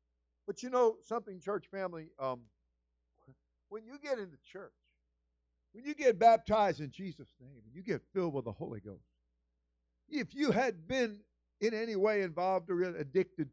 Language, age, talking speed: English, 50-69, 170 wpm